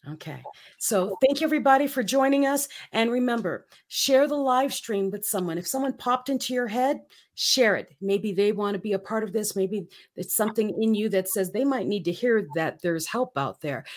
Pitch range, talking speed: 185-245 Hz, 215 wpm